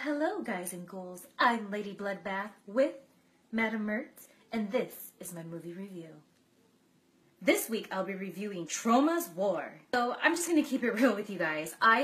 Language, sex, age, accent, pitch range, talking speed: English, female, 20-39, American, 190-260 Hz, 170 wpm